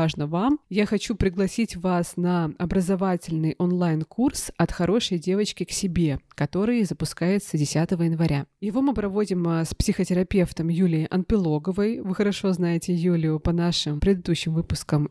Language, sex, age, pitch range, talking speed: Russian, female, 20-39, 175-205 Hz, 130 wpm